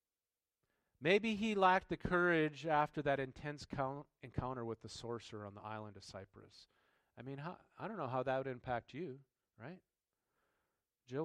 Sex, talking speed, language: male, 160 wpm, English